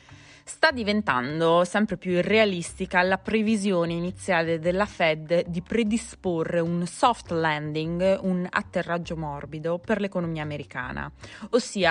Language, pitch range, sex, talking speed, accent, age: Italian, 165-205 Hz, female, 110 wpm, native, 20-39